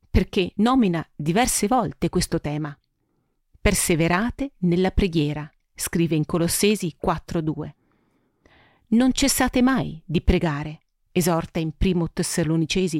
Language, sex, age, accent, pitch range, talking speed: Italian, female, 40-59, native, 170-210 Hz, 100 wpm